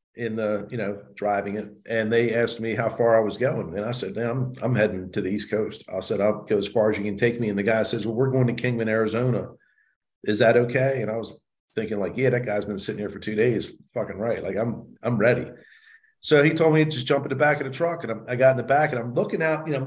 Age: 40-59